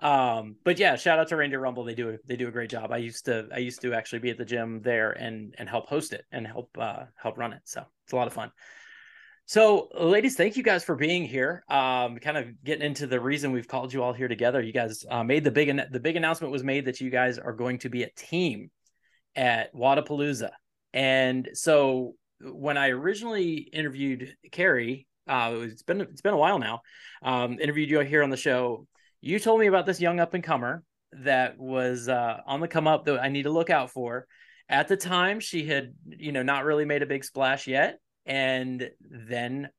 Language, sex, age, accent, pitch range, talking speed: English, male, 20-39, American, 125-160 Hz, 225 wpm